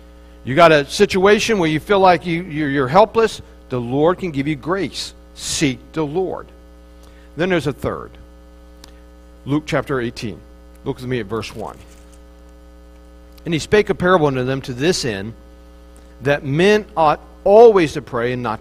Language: English